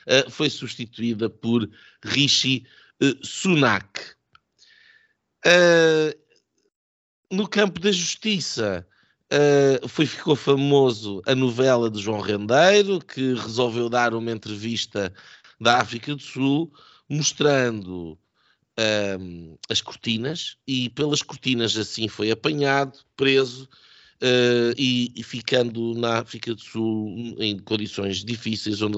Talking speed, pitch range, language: 95 wpm, 105-135 Hz, Portuguese